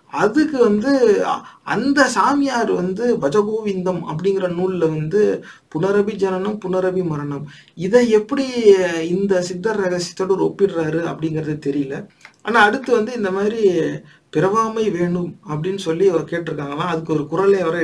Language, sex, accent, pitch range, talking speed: English, male, Indian, 160-200 Hz, 135 wpm